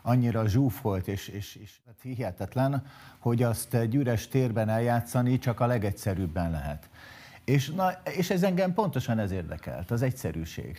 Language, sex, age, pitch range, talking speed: Hungarian, male, 50-69, 100-130 Hz, 135 wpm